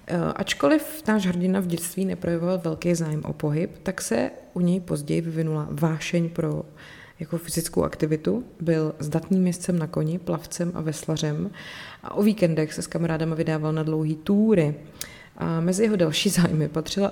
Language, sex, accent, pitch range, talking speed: Czech, female, native, 160-180 Hz, 160 wpm